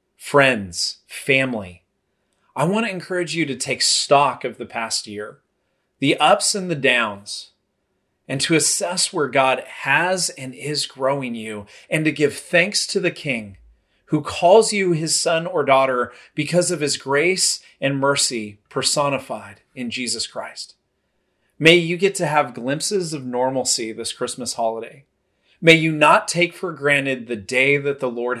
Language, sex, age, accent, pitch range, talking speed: English, male, 30-49, American, 120-155 Hz, 160 wpm